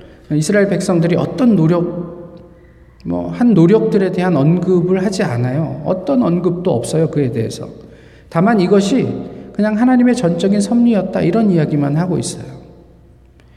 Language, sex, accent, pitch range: Korean, male, native, 160-230 Hz